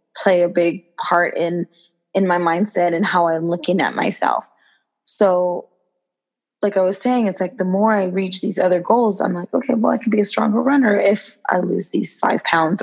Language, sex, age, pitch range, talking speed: English, female, 20-39, 180-210 Hz, 205 wpm